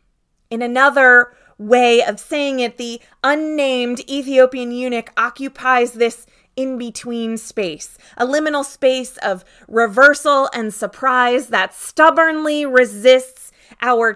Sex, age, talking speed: female, 20-39, 105 wpm